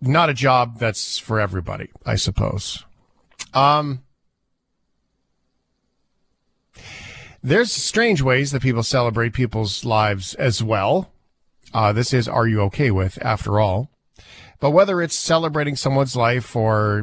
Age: 40-59